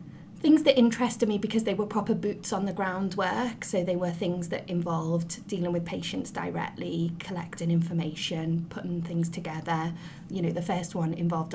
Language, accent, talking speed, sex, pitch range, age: English, British, 170 wpm, female, 175-205 Hz, 20-39